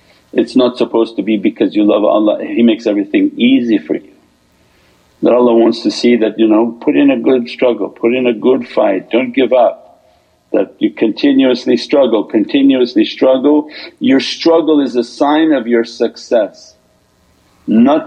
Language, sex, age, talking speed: English, male, 50-69, 170 wpm